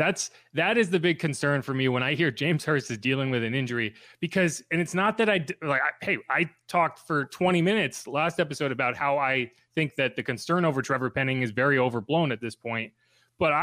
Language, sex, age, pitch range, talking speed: English, male, 30-49, 120-160 Hz, 225 wpm